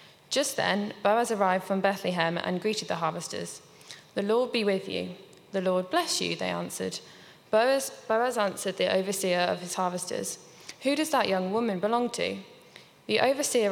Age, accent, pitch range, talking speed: 20-39, British, 180-225 Hz, 165 wpm